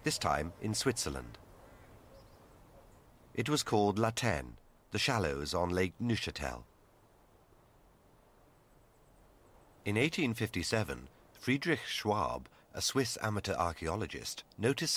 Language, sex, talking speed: Italian, male, 90 wpm